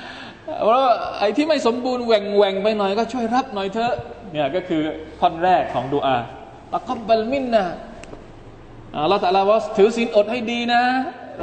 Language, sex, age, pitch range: Thai, male, 20-39, 135-210 Hz